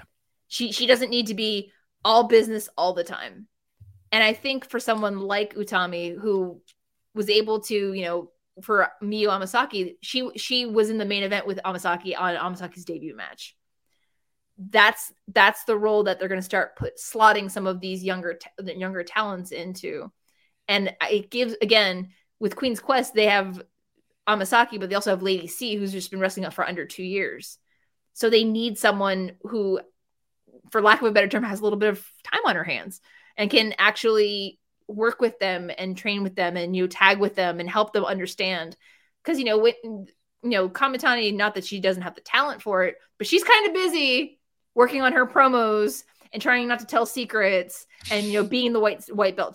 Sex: female